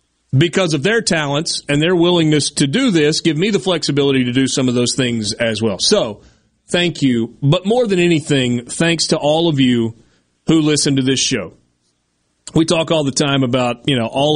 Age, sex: 30-49, male